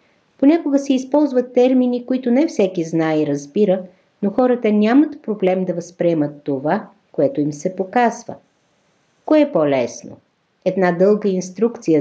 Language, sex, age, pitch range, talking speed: Bulgarian, female, 50-69, 170-230 Hz, 135 wpm